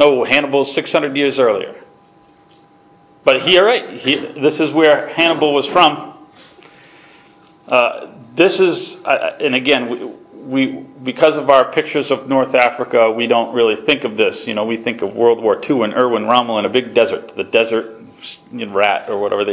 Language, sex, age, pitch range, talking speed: English, male, 40-59, 120-185 Hz, 175 wpm